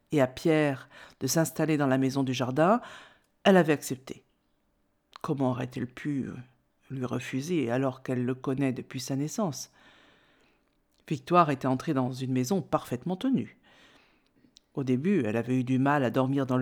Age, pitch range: 50-69, 130-190 Hz